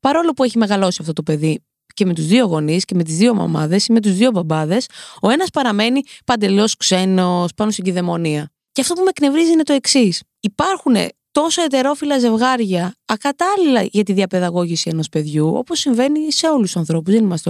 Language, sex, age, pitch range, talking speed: Greek, female, 20-39, 185-290 Hz, 190 wpm